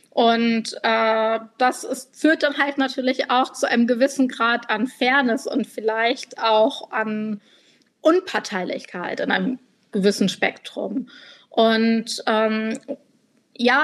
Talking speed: 115 wpm